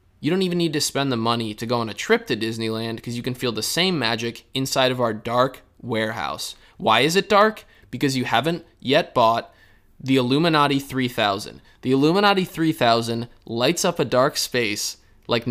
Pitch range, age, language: 115-160 Hz, 20-39, English